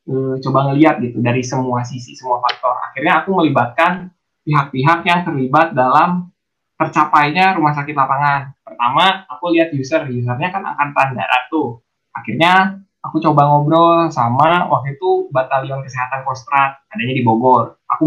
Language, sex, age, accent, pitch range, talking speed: Indonesian, male, 10-29, native, 130-165 Hz, 140 wpm